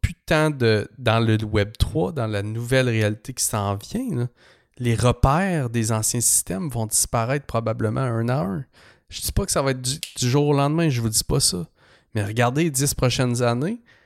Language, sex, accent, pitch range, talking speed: English, male, Canadian, 105-135 Hz, 215 wpm